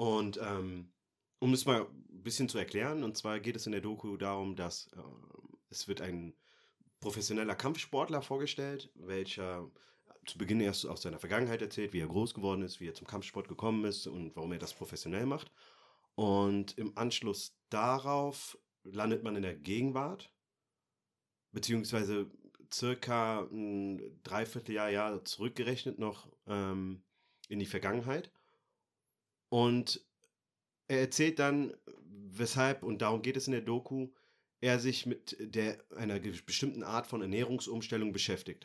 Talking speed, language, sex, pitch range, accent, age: 140 wpm, German, male, 100-125 Hz, German, 30-49